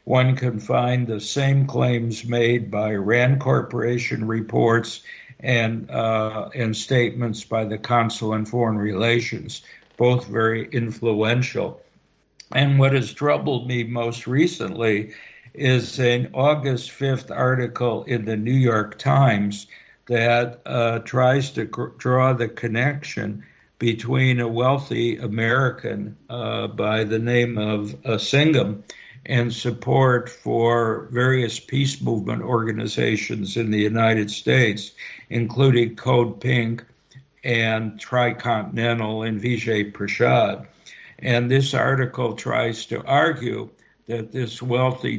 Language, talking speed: English, 115 wpm